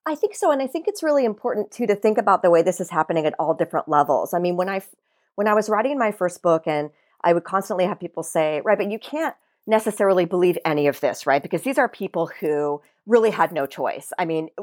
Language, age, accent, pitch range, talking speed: English, 40-59, American, 160-220 Hz, 250 wpm